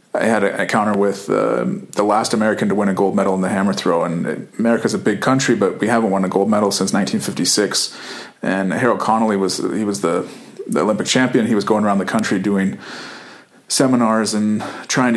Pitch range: 100-115 Hz